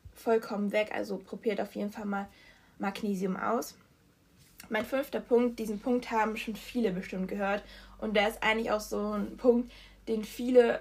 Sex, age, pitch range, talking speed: female, 20-39, 210-240 Hz, 165 wpm